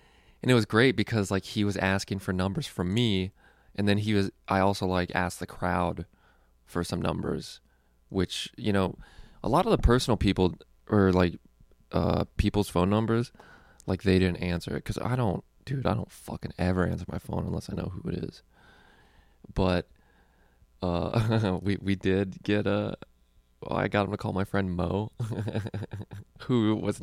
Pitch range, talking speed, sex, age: 90-110 Hz, 180 wpm, male, 20-39